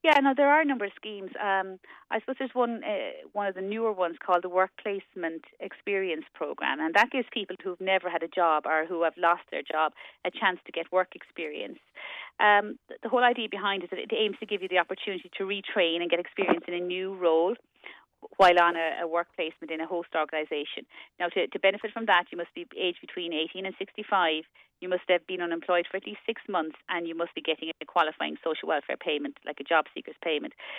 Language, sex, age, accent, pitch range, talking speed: English, female, 30-49, Irish, 170-225 Hz, 230 wpm